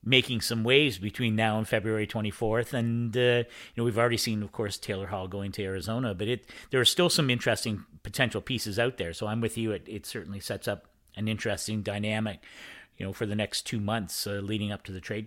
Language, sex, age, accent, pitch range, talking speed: English, male, 40-59, American, 110-150 Hz, 230 wpm